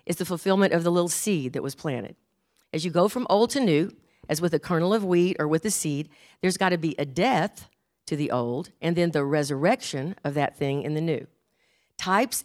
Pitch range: 165-220 Hz